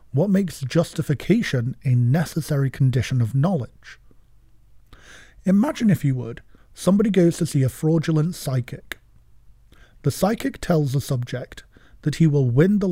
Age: 40-59